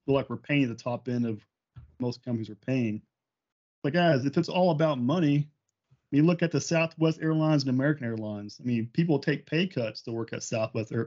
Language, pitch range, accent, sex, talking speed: English, 120-145 Hz, American, male, 215 wpm